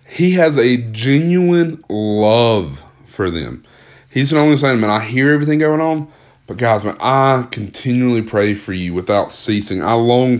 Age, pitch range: 30-49, 105-125 Hz